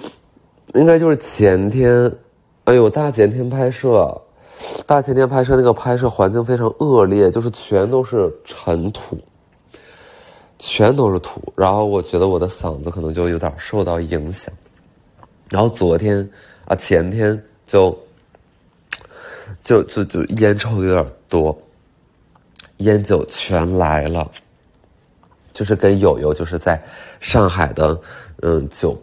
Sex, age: male, 30-49